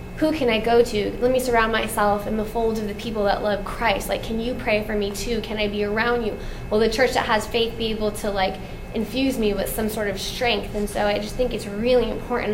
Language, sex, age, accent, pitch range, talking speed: English, female, 10-29, American, 195-225 Hz, 265 wpm